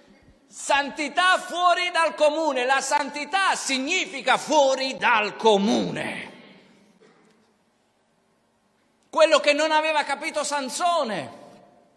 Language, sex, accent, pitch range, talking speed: Italian, male, native, 220-285 Hz, 80 wpm